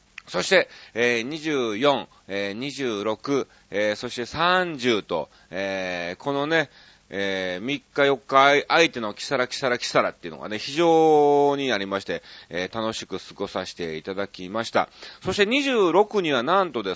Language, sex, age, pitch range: Japanese, male, 40-59, 100-150 Hz